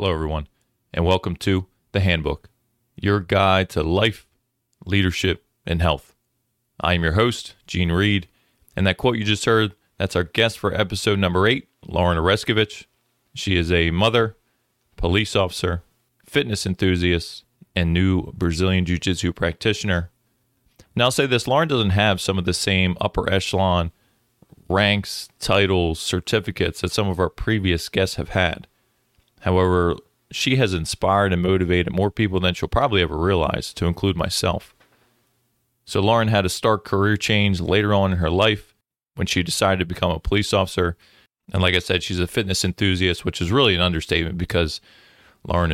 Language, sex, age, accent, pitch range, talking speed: English, male, 30-49, American, 90-105 Hz, 160 wpm